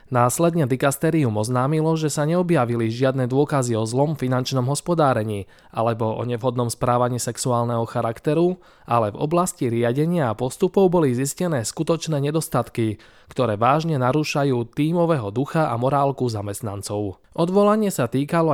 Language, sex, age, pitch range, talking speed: Slovak, male, 20-39, 120-155 Hz, 125 wpm